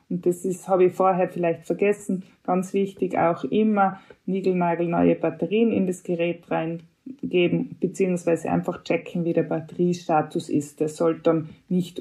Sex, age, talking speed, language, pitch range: female, 20-39, 145 wpm, German, 165-205 Hz